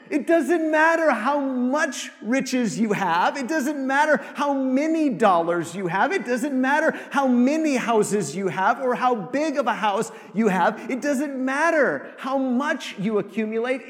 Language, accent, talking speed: English, American, 170 wpm